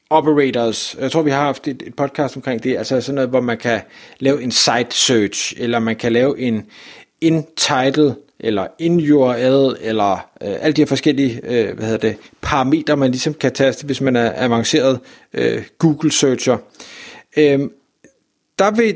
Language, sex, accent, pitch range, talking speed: Danish, male, native, 135-210 Hz, 140 wpm